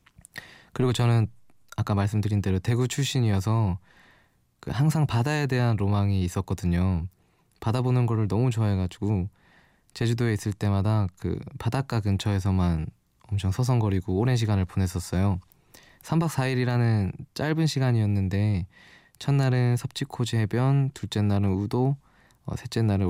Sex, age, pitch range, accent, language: male, 20-39, 95-120 Hz, native, Korean